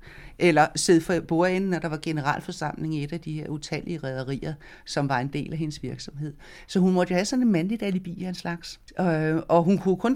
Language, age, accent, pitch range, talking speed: Danish, 60-79, native, 155-215 Hz, 220 wpm